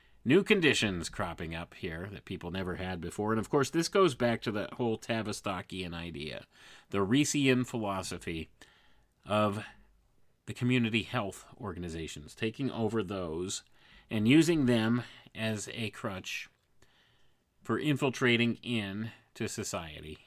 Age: 30-49